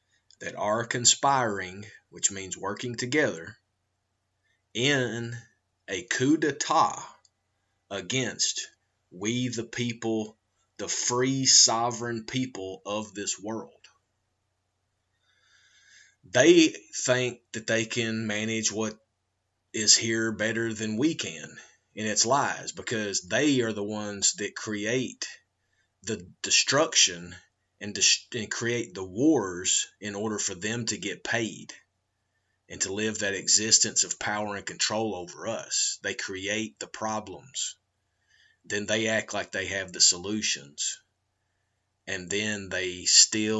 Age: 30-49